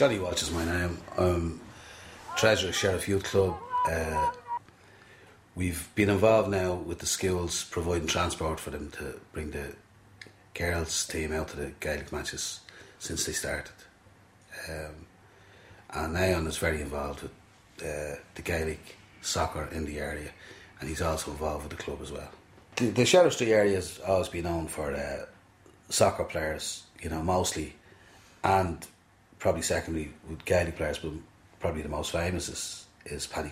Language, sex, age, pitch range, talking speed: English, male, 30-49, 75-100 Hz, 160 wpm